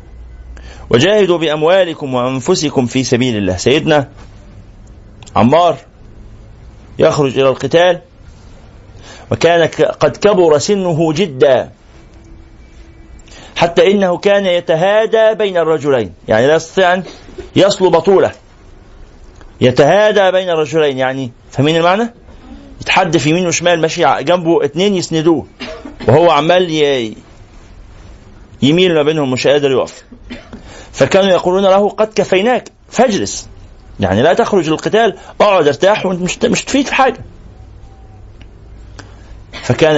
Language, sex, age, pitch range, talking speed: Arabic, male, 50-69, 110-175 Hz, 100 wpm